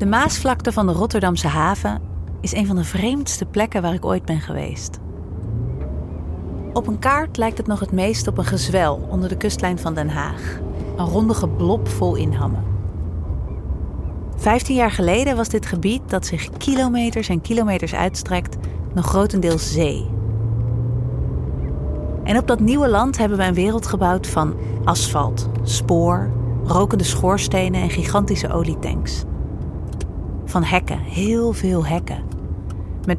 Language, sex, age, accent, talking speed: Dutch, female, 40-59, Dutch, 140 wpm